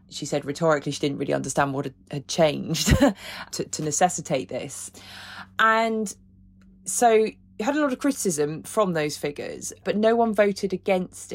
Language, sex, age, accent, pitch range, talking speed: English, female, 20-39, British, 145-185 Hz, 160 wpm